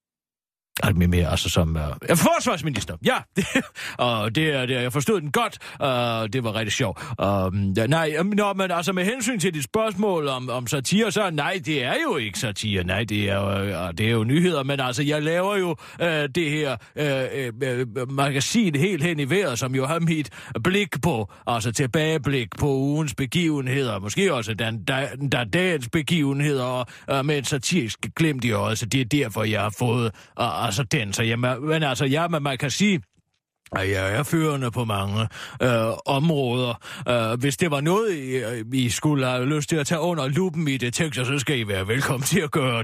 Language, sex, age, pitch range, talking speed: Danish, male, 30-49, 105-150 Hz, 195 wpm